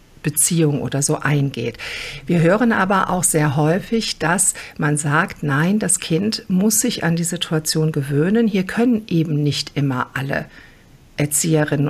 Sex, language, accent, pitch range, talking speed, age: female, German, German, 150-190 Hz, 145 wpm, 50-69